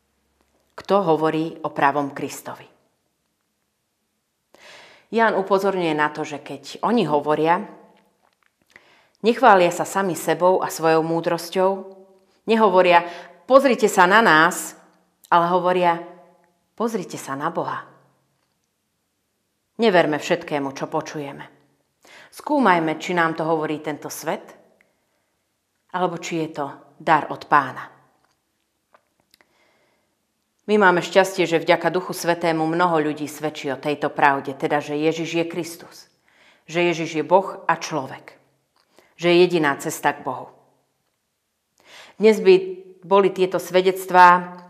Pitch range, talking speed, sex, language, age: 150-185 Hz, 115 wpm, female, Slovak, 30-49